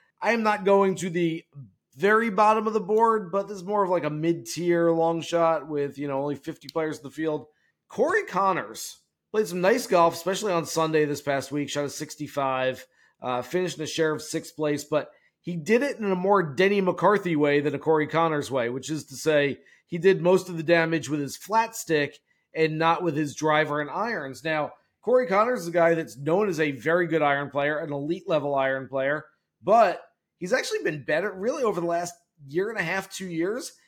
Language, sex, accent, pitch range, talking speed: English, male, American, 150-180 Hz, 220 wpm